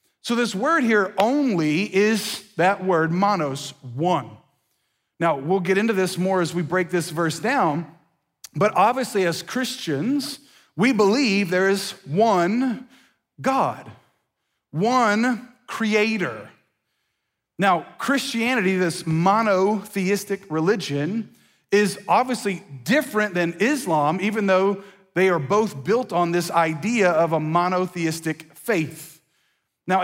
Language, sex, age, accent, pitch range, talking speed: English, male, 40-59, American, 165-215 Hz, 115 wpm